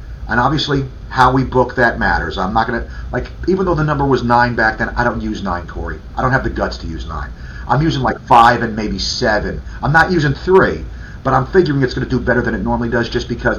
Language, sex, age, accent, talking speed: English, male, 40-59, American, 255 wpm